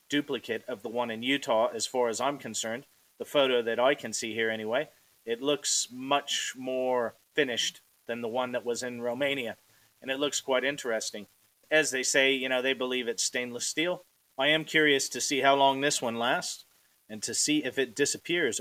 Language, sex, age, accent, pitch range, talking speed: English, male, 40-59, American, 120-150 Hz, 200 wpm